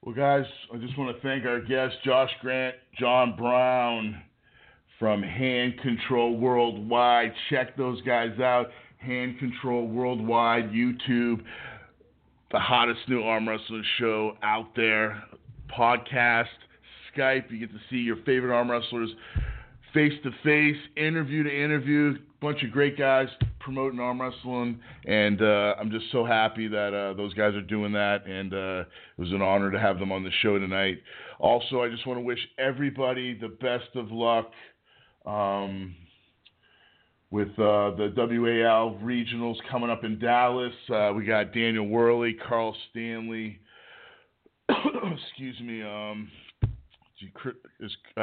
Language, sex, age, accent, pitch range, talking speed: English, male, 40-59, American, 110-125 Hz, 140 wpm